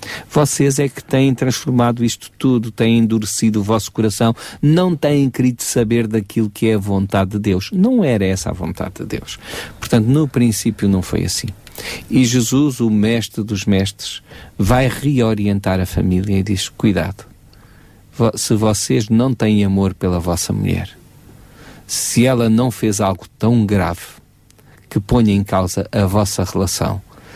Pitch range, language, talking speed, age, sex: 95-115 Hz, Portuguese, 155 wpm, 40-59, male